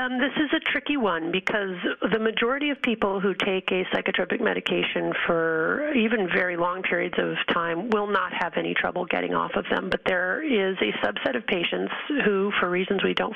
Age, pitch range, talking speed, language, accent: 40-59, 185-245 Hz, 200 wpm, English, American